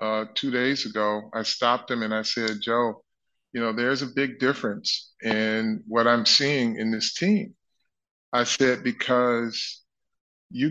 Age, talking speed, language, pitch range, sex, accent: 30-49, 155 wpm, English, 115-135 Hz, male, American